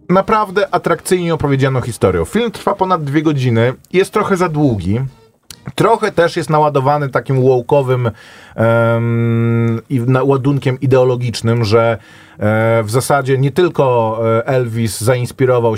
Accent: native